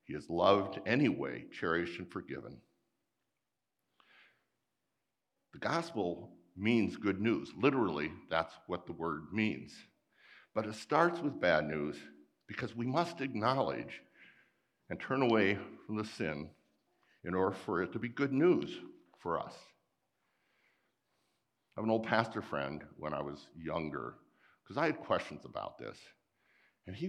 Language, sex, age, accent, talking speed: English, male, 60-79, American, 135 wpm